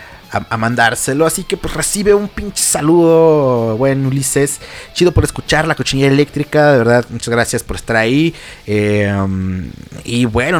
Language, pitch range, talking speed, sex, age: Spanish, 115-165 Hz, 155 wpm, male, 30-49